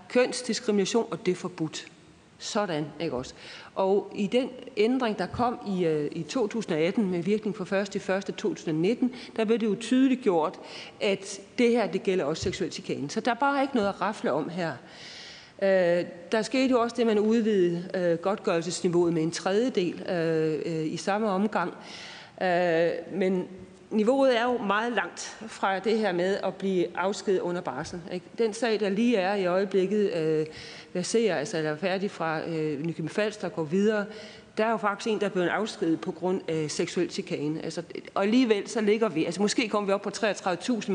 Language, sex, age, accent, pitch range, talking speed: Danish, female, 40-59, native, 175-220 Hz, 185 wpm